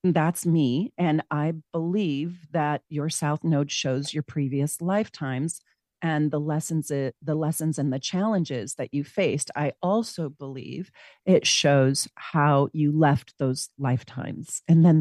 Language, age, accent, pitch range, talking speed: English, 40-59, American, 140-165 Hz, 145 wpm